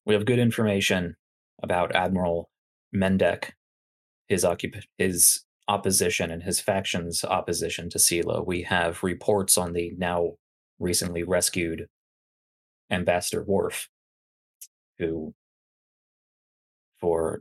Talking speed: 100 wpm